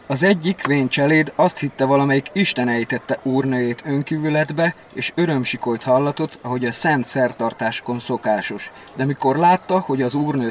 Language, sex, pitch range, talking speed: Hungarian, male, 125-155 Hz, 145 wpm